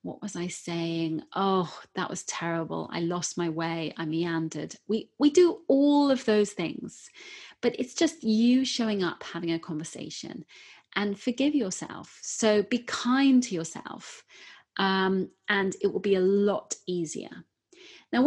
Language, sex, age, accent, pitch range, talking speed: English, female, 30-49, British, 180-235 Hz, 155 wpm